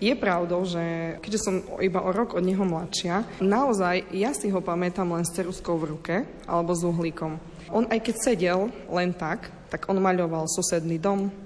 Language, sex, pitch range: Slovak, female, 175-205 Hz